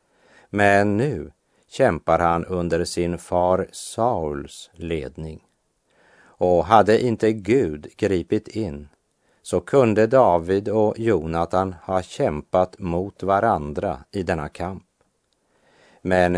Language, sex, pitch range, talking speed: French, male, 85-110 Hz, 105 wpm